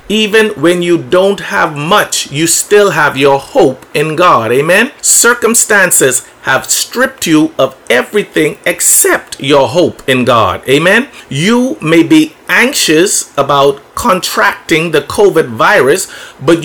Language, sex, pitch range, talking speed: English, male, 150-230 Hz, 130 wpm